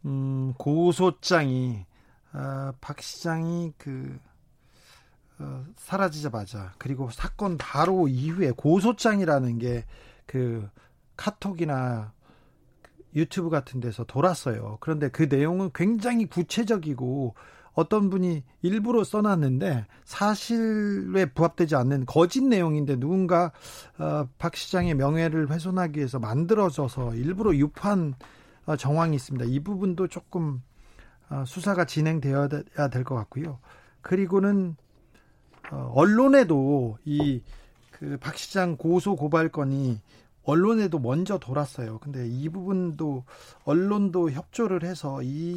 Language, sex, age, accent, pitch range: Korean, male, 40-59, native, 130-180 Hz